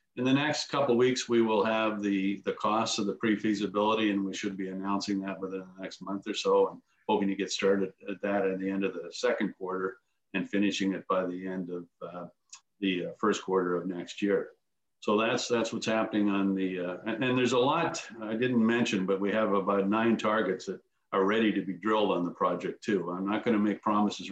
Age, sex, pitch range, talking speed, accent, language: 50-69, male, 95-110 Hz, 230 wpm, American, English